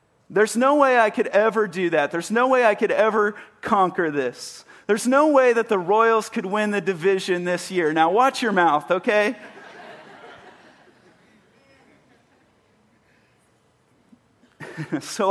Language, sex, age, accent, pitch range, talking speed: English, male, 40-59, American, 145-195 Hz, 135 wpm